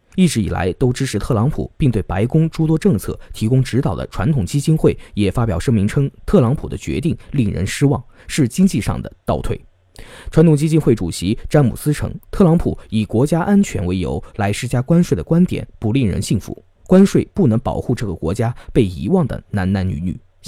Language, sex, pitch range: Chinese, male, 100-160 Hz